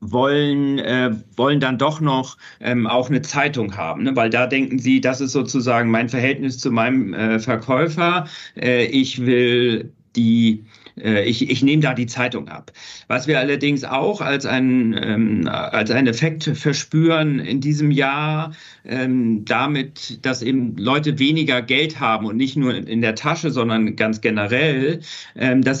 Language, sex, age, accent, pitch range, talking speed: German, male, 50-69, German, 120-150 Hz, 150 wpm